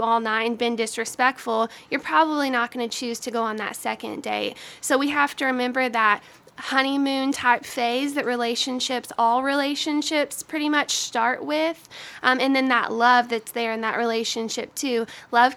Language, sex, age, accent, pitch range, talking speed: English, female, 20-39, American, 235-270 Hz, 175 wpm